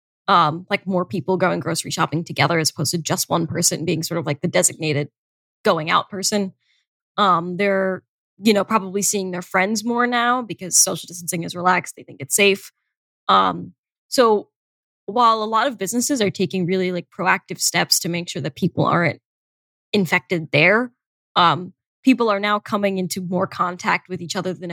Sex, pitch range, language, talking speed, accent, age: female, 180-230 Hz, English, 190 wpm, American, 10-29